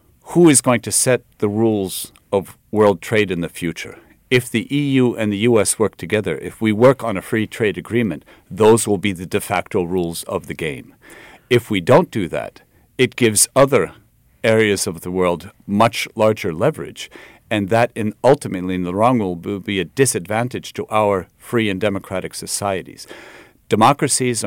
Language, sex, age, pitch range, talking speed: English, male, 50-69, 95-120 Hz, 180 wpm